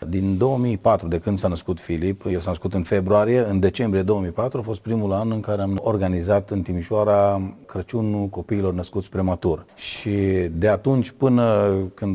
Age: 40-59